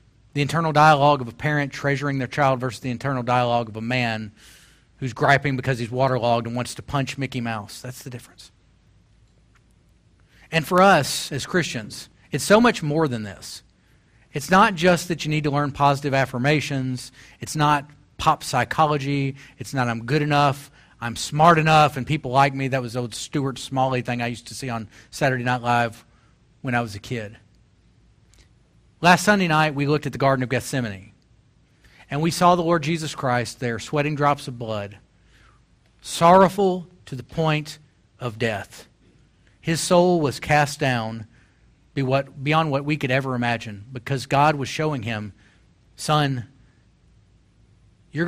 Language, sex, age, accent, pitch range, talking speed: English, male, 40-59, American, 115-150 Hz, 165 wpm